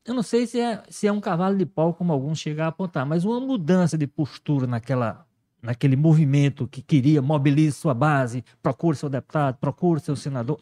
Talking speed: 200 wpm